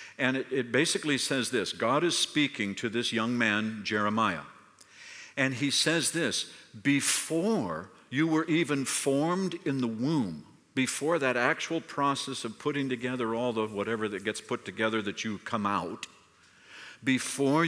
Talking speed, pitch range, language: 155 wpm, 110-140 Hz, English